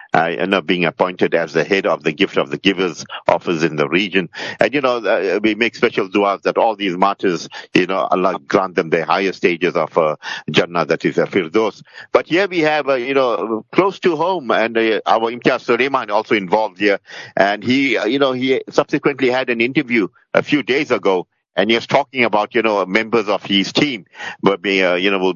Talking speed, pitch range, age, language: 220 wpm, 105-135 Hz, 50-69, English